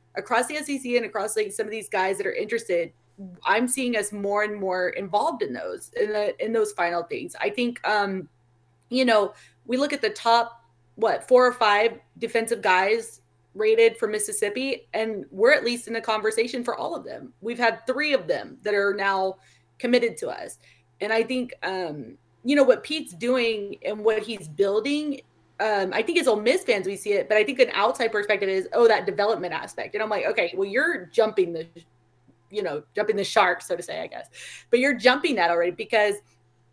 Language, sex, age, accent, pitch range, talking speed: English, female, 20-39, American, 195-255 Hz, 205 wpm